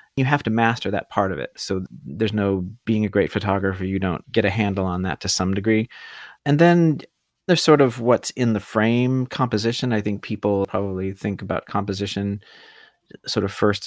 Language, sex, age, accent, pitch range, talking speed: English, male, 30-49, American, 95-115 Hz, 195 wpm